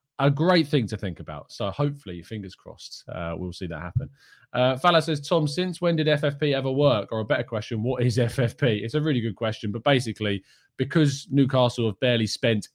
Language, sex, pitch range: English, male, 95-135 Hz